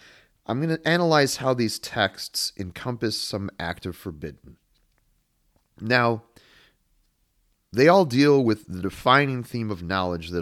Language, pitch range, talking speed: English, 95-125 Hz, 130 wpm